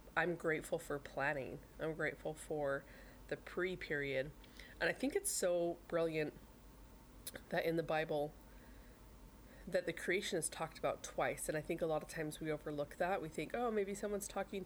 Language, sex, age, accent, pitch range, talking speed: English, female, 20-39, American, 155-185 Hz, 170 wpm